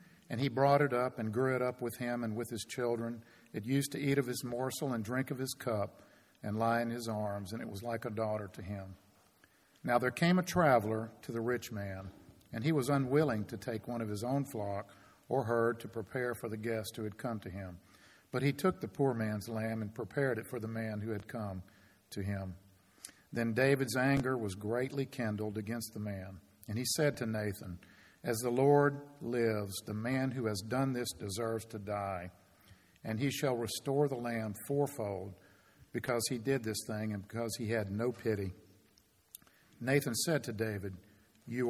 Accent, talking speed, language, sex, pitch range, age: American, 200 wpm, English, male, 105-125 Hz, 50-69